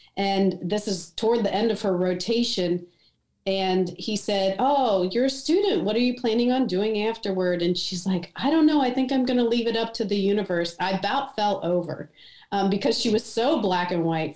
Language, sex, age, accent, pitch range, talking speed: English, female, 40-59, American, 185-235 Hz, 215 wpm